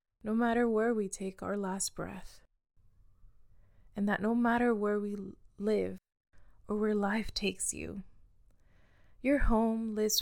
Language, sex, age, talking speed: English, female, 20-39, 135 wpm